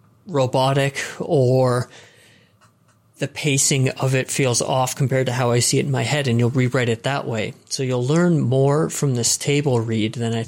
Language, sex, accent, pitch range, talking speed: English, male, American, 120-140 Hz, 190 wpm